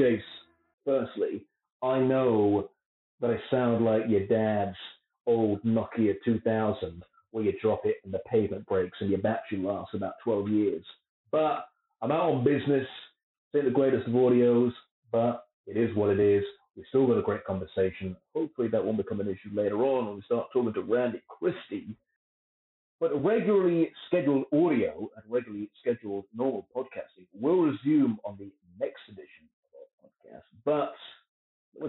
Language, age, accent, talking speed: English, 40-59, British, 155 wpm